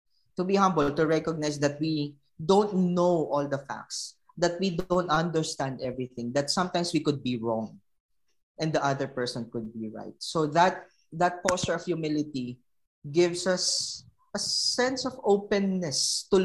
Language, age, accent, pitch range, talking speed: English, 20-39, Filipino, 125-170 Hz, 155 wpm